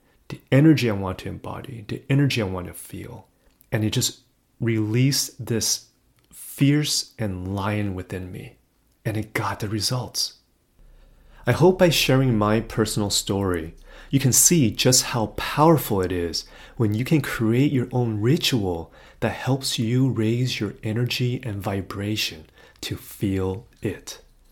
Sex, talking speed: male, 145 wpm